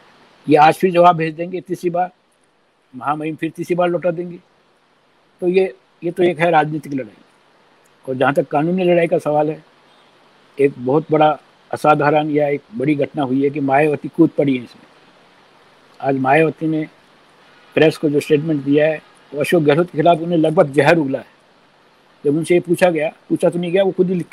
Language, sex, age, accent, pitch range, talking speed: Hindi, male, 60-79, native, 155-185 Hz, 190 wpm